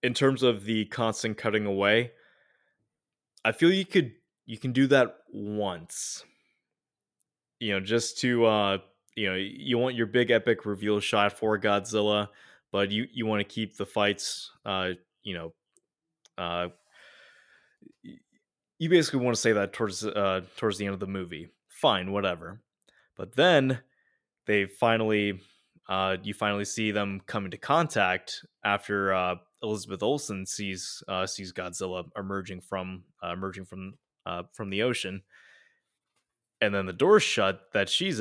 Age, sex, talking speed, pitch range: 20-39, male, 150 wpm, 95-115 Hz